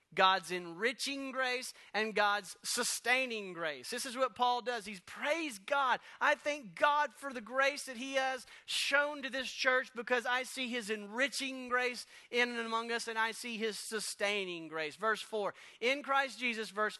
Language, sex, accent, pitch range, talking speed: English, male, American, 210-280 Hz, 175 wpm